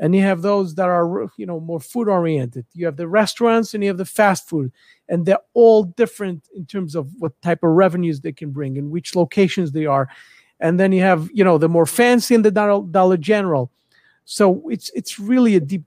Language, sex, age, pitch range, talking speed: English, male, 50-69, 155-210 Hz, 225 wpm